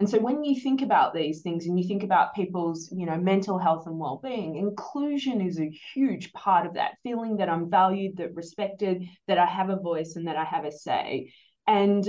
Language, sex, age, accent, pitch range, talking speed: English, female, 20-39, Australian, 170-210 Hz, 220 wpm